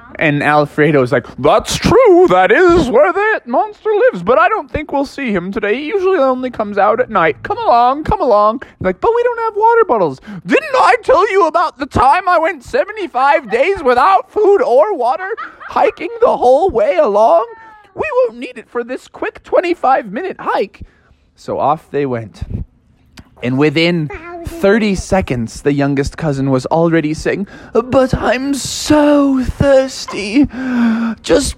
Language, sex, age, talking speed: English, male, 20-39, 160 wpm